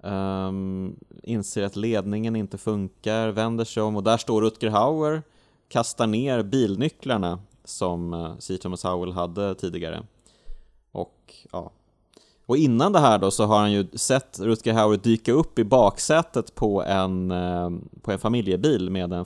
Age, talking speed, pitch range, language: 20-39, 145 wpm, 90-115 Hz, English